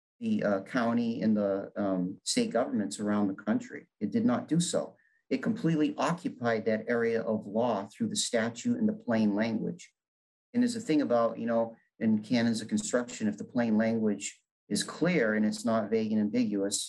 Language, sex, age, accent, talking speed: English, male, 50-69, American, 190 wpm